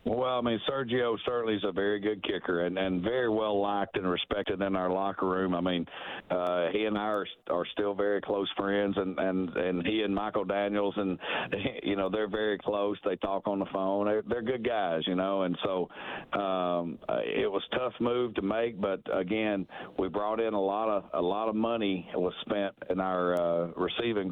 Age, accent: 50-69, American